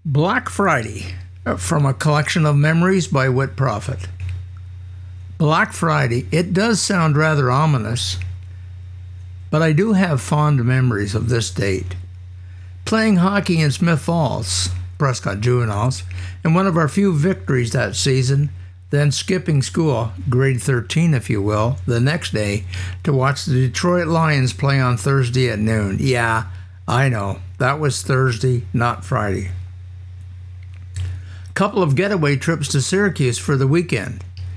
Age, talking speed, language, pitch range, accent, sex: 60-79, 135 wpm, English, 90-150 Hz, American, male